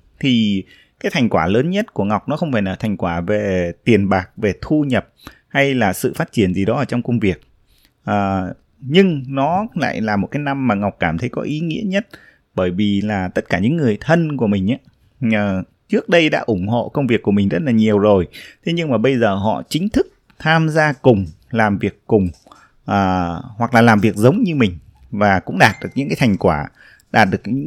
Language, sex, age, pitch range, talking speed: Vietnamese, male, 20-39, 100-135 Hz, 220 wpm